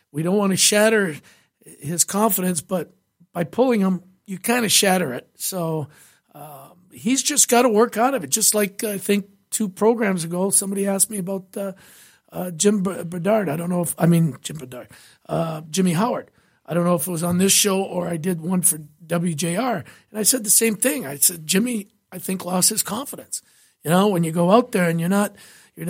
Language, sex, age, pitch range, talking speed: English, male, 50-69, 165-205 Hz, 215 wpm